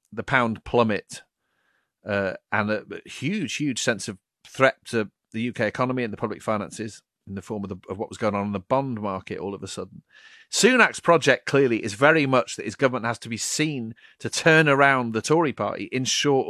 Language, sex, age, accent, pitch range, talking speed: English, male, 40-59, British, 110-135 Hz, 205 wpm